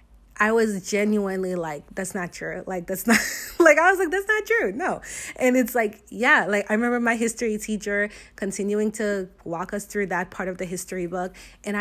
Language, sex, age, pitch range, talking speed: English, female, 30-49, 185-250 Hz, 205 wpm